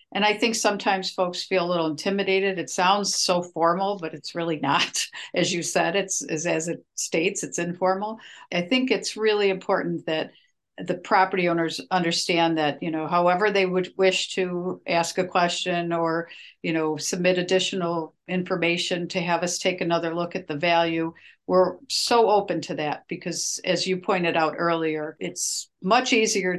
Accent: American